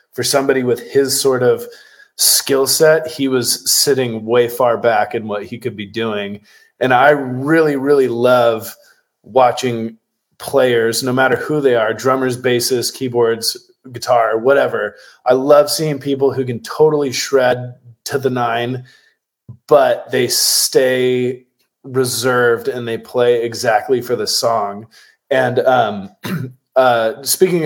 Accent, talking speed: American, 135 wpm